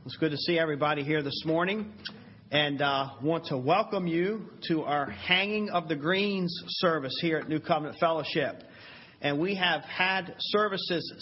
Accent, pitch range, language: American, 135-180 Hz, English